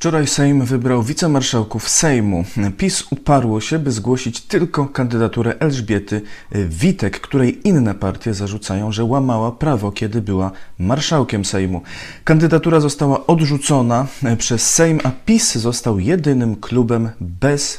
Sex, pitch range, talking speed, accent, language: male, 105-140 Hz, 120 wpm, native, Polish